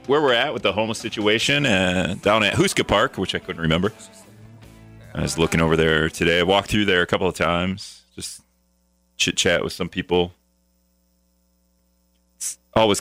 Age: 30-49